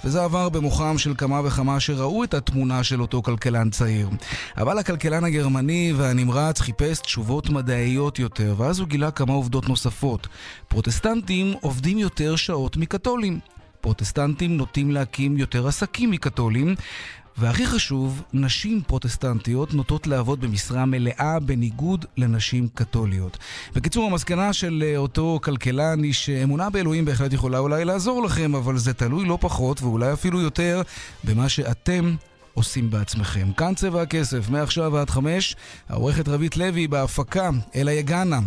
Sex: male